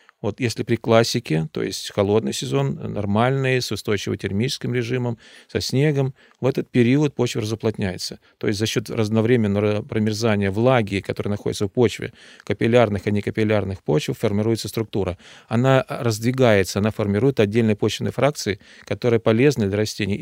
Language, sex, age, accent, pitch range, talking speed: Russian, male, 40-59, native, 105-125 Hz, 140 wpm